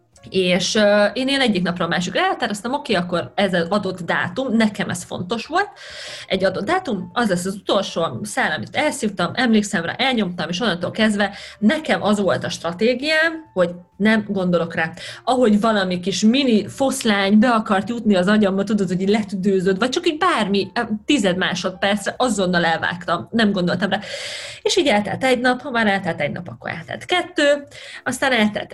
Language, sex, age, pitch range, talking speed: Hungarian, female, 30-49, 190-250 Hz, 175 wpm